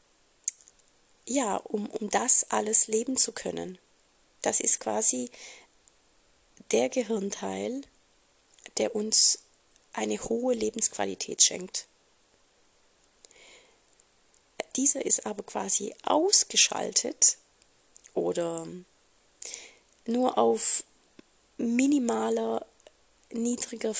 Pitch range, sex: 190-245 Hz, female